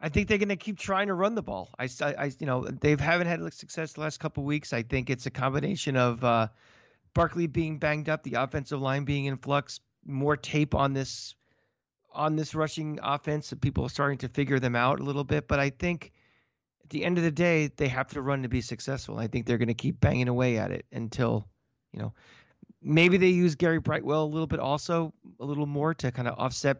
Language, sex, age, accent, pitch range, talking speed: English, male, 40-59, American, 125-155 Hz, 235 wpm